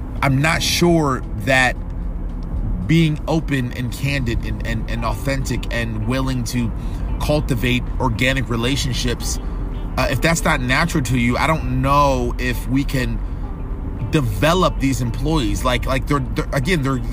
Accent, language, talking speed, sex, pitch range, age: American, English, 140 wpm, male, 110-135 Hz, 30-49